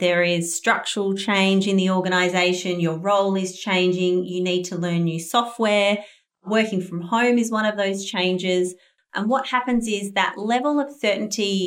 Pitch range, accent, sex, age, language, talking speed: 180-225 Hz, Australian, female, 30-49, English, 170 wpm